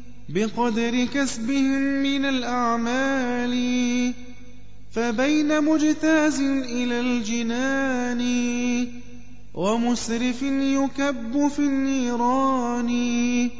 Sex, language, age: male, Arabic, 20-39